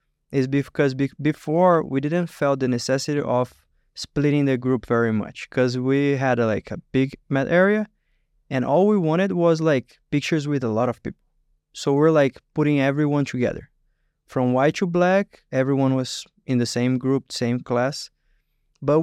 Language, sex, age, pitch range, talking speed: Bulgarian, male, 20-39, 125-145 Hz, 175 wpm